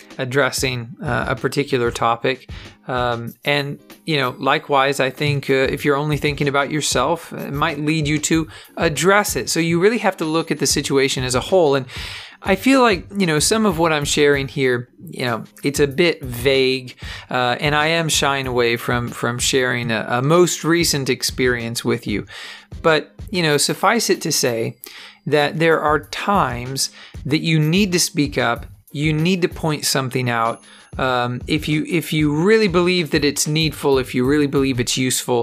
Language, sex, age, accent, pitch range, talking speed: English, male, 40-59, American, 125-155 Hz, 185 wpm